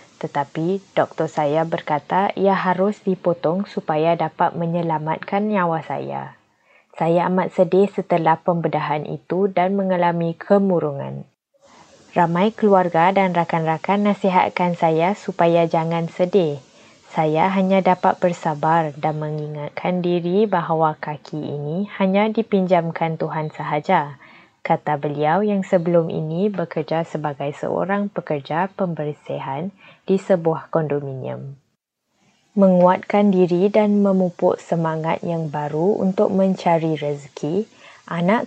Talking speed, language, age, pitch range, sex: 105 wpm, Malay, 20-39, 160-190 Hz, female